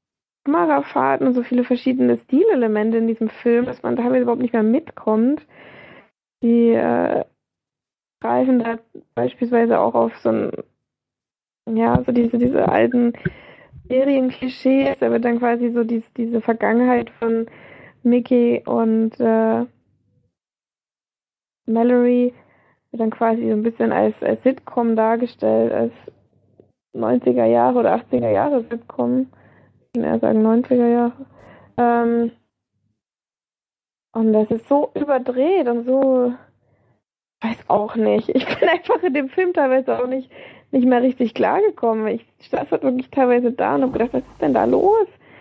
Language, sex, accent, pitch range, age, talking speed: German, female, German, 230-265 Hz, 20-39, 135 wpm